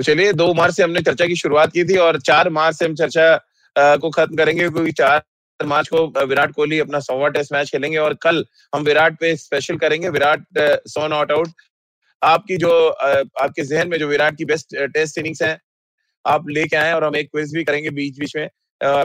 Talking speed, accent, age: 215 wpm, native, 30-49